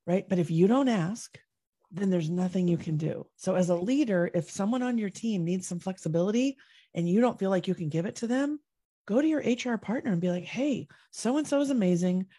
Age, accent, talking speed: 30-49, American, 235 wpm